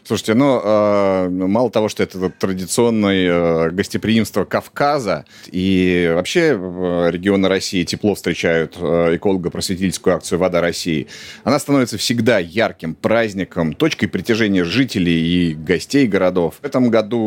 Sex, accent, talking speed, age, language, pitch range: male, native, 115 wpm, 30-49, Russian, 90-105 Hz